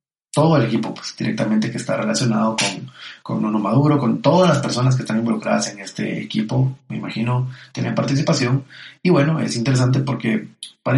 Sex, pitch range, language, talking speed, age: male, 115-145 Hz, Spanish, 175 wpm, 30-49